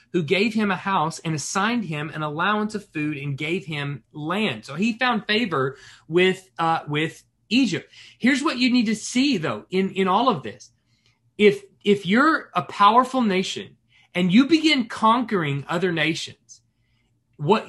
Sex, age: male, 30-49